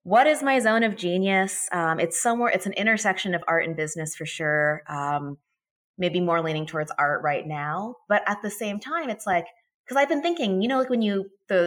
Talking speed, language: 220 wpm, English